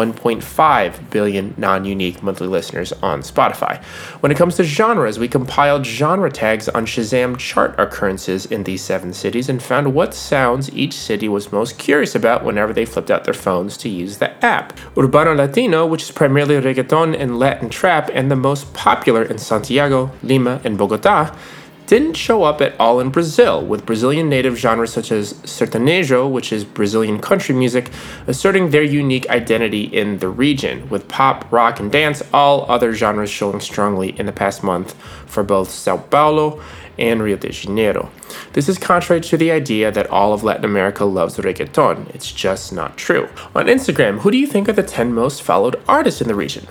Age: 30-49